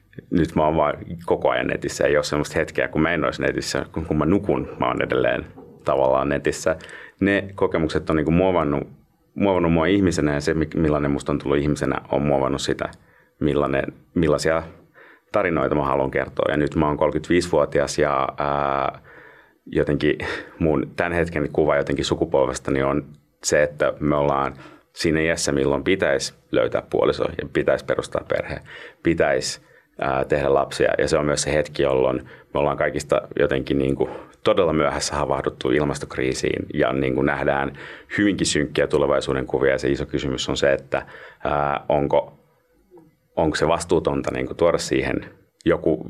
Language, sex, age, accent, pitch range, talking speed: Finnish, male, 30-49, native, 70-80 Hz, 150 wpm